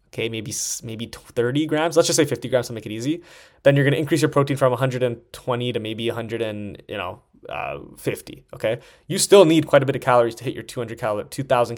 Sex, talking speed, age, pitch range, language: male, 230 wpm, 20-39, 115-145 Hz, English